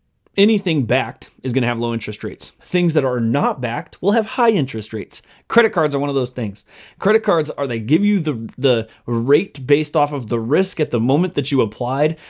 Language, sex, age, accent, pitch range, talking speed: English, male, 20-39, American, 125-165 Hz, 225 wpm